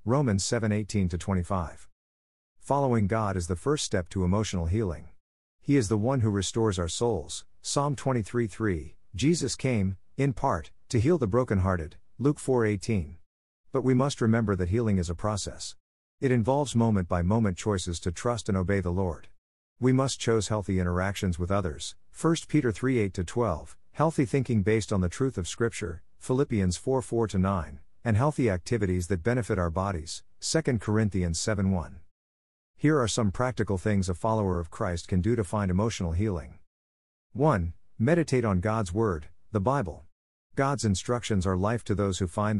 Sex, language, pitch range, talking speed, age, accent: male, English, 90-115 Hz, 160 wpm, 50-69, American